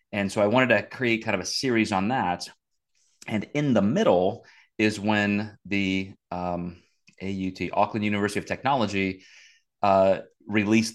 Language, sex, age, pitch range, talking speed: English, male, 30-49, 95-115 Hz, 150 wpm